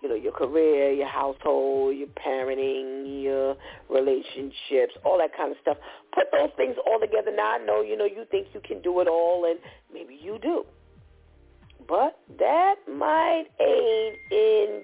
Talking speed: 165 wpm